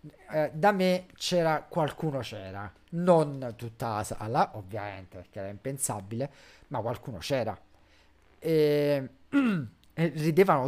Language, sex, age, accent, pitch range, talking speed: Italian, male, 40-59, native, 105-150 Hz, 110 wpm